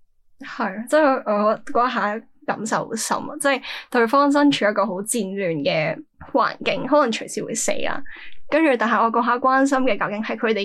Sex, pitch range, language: female, 195-250 Hz, Chinese